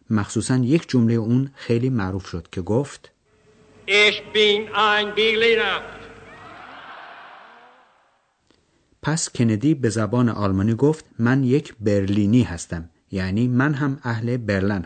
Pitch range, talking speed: 95-125 Hz, 95 wpm